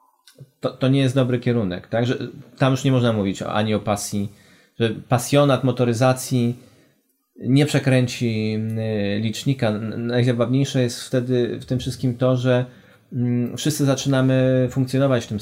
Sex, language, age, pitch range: male, Polish, 30-49, 110-130 Hz